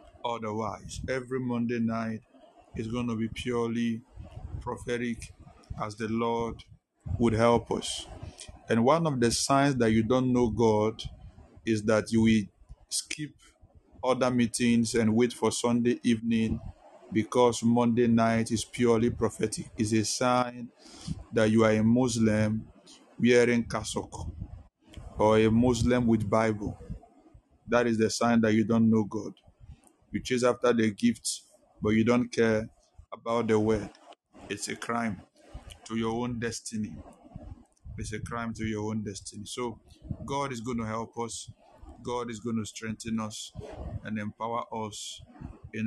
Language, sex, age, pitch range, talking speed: English, male, 50-69, 110-120 Hz, 145 wpm